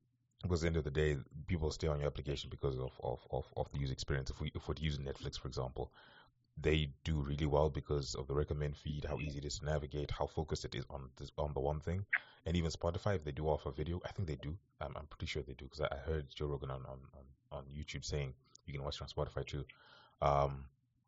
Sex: male